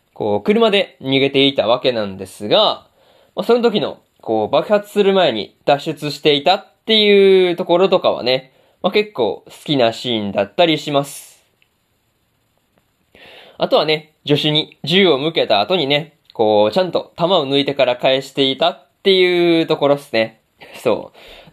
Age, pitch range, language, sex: 20-39, 135-190 Hz, Japanese, male